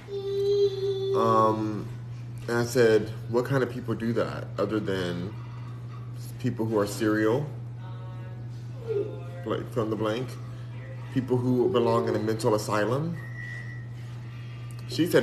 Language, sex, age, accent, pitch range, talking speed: English, male, 30-49, American, 115-125 Hz, 115 wpm